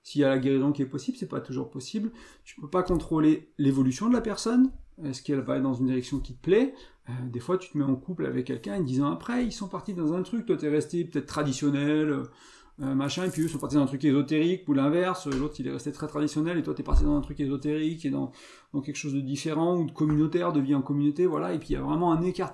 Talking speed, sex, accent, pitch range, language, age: 285 wpm, male, French, 140-175 Hz, French, 40-59